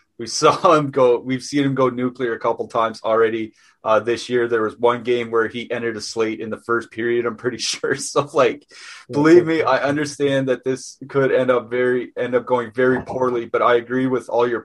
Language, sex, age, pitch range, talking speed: English, male, 30-49, 115-135 Hz, 225 wpm